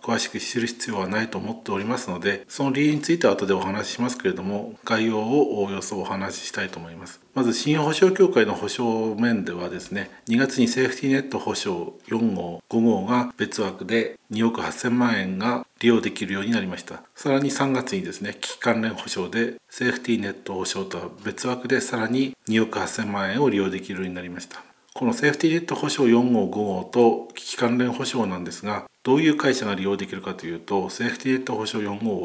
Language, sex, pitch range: Japanese, male, 100-130 Hz